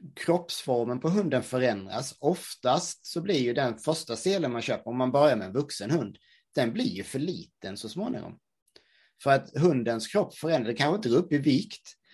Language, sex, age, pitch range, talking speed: English, male, 30-49, 115-145 Hz, 195 wpm